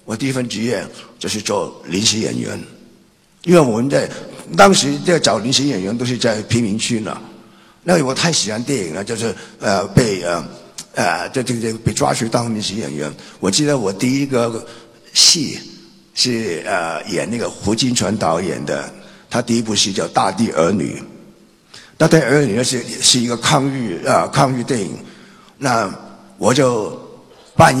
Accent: native